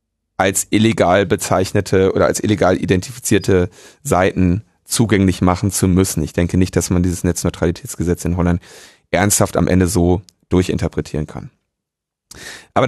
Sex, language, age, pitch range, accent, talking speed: male, German, 30-49, 100-130 Hz, German, 130 wpm